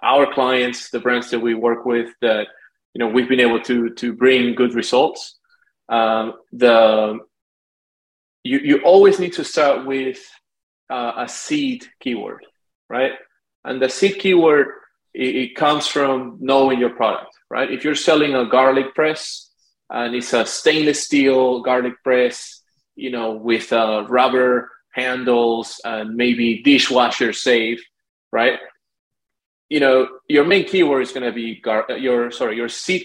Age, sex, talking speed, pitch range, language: 30-49, male, 150 wpm, 120-165 Hz, English